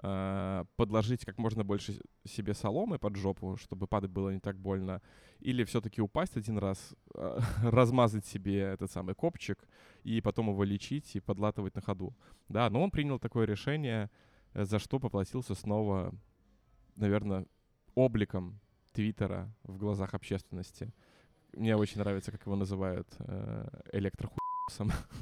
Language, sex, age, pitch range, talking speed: Russian, male, 20-39, 95-115 Hz, 130 wpm